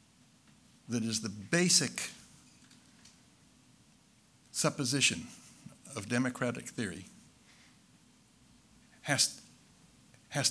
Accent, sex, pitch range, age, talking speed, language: American, male, 125-155 Hz, 60-79, 55 wpm, English